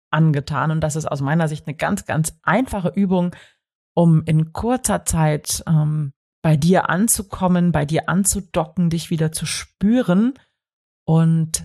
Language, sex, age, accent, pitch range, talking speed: German, female, 30-49, German, 150-180 Hz, 145 wpm